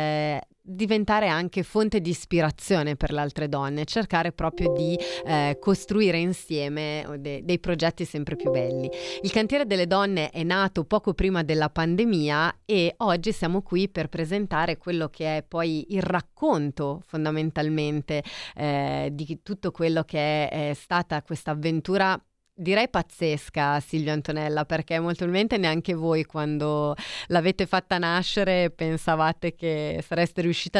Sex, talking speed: female, 140 wpm